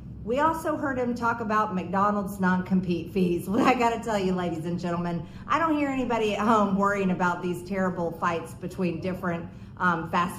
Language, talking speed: English, 180 wpm